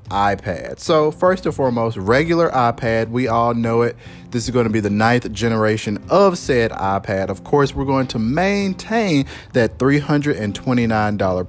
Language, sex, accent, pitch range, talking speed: English, male, American, 105-145 Hz, 155 wpm